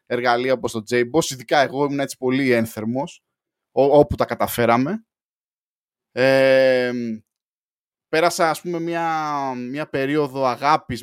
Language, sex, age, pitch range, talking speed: Greek, male, 20-39, 120-170 Hz, 120 wpm